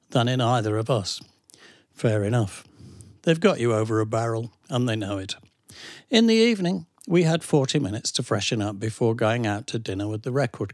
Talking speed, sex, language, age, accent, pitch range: 195 wpm, male, English, 60-79, British, 110-140 Hz